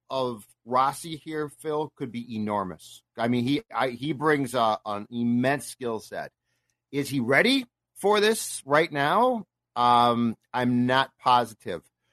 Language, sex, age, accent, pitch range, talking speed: English, male, 40-59, American, 120-150 Hz, 145 wpm